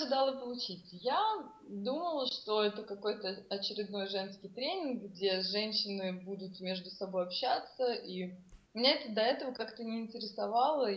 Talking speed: 125 wpm